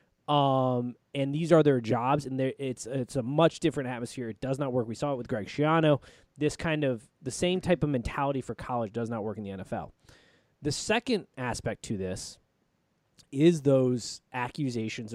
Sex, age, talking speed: male, 20-39, 185 wpm